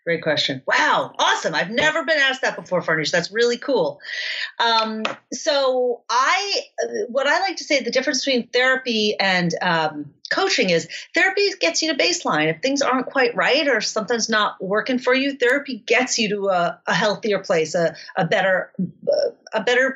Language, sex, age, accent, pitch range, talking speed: English, female, 40-59, American, 185-270 Hz, 175 wpm